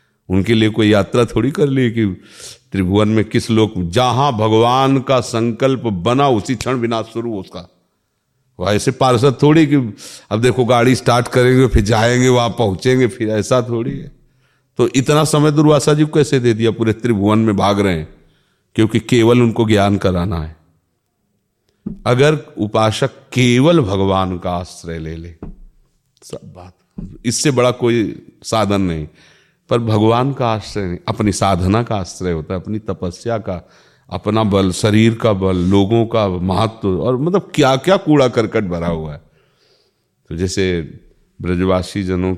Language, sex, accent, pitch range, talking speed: Hindi, male, native, 95-125 Hz, 160 wpm